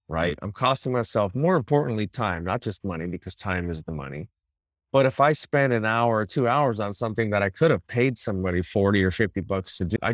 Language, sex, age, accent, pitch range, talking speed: English, male, 30-49, American, 95-115 Hz, 230 wpm